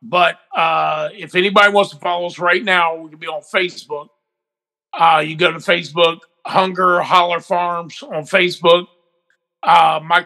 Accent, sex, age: American, male, 50-69